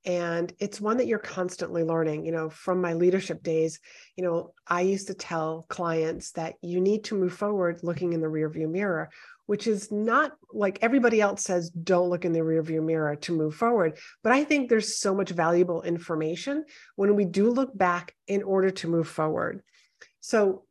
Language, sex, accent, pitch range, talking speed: English, female, American, 170-210 Hz, 190 wpm